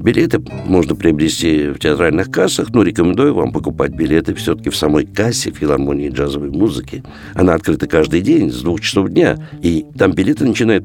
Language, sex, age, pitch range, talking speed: Russian, male, 60-79, 75-120 Hz, 165 wpm